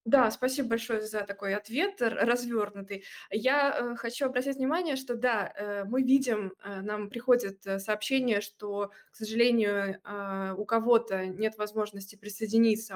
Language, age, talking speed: Russian, 20-39, 120 wpm